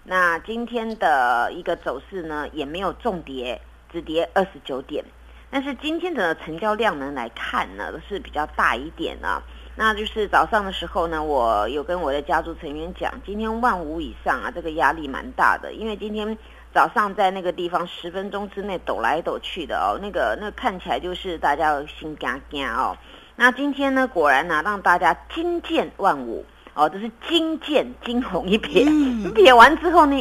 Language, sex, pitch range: Chinese, female, 155-220 Hz